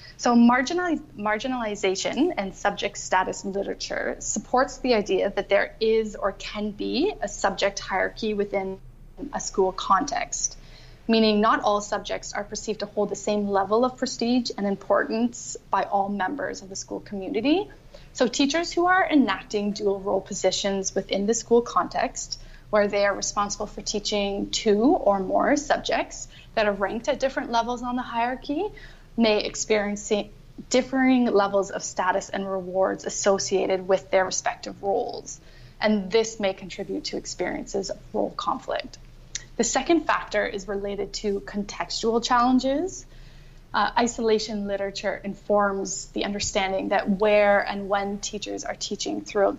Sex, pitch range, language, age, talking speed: female, 195-235 Hz, English, 20-39, 145 wpm